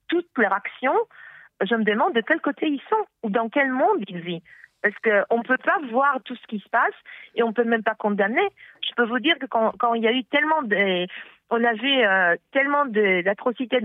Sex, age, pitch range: female, 40-59, 215-275 Hz